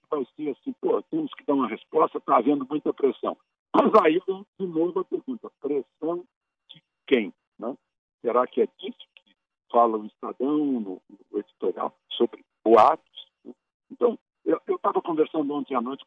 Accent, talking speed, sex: Brazilian, 165 wpm, male